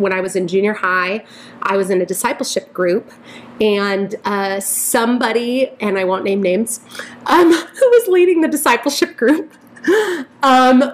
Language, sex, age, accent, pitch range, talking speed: English, female, 30-49, American, 190-255 Hz, 155 wpm